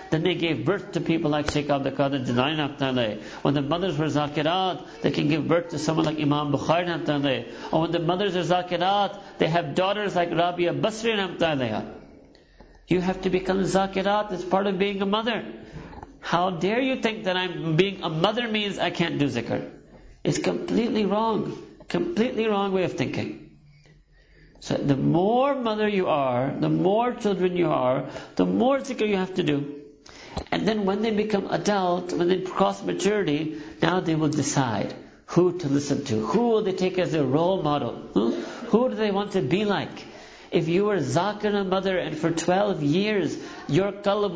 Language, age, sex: English, 50-69, male